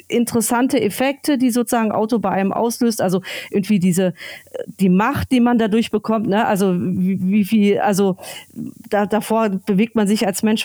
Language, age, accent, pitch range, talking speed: German, 40-59, German, 195-240 Hz, 135 wpm